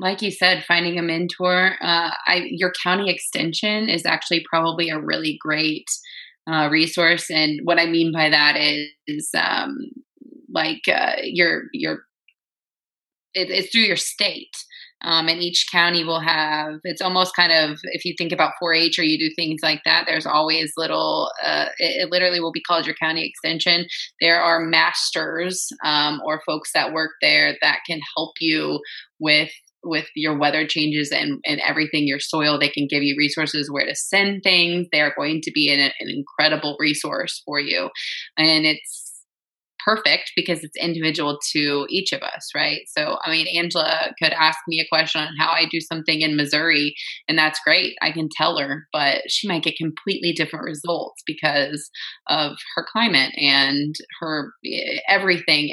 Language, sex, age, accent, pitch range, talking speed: English, female, 20-39, American, 155-175 Hz, 175 wpm